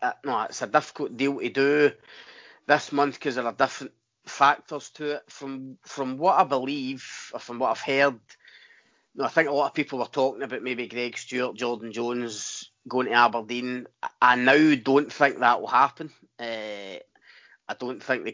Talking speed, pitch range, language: 195 wpm, 120-140 Hz, English